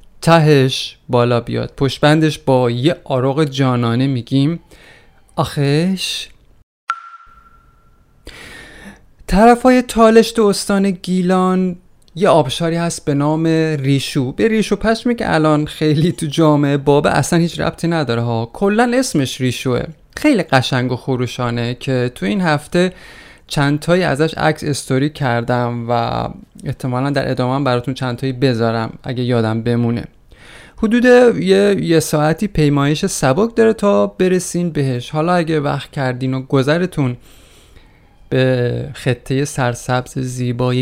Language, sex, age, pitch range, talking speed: Persian, male, 30-49, 130-175 Hz, 120 wpm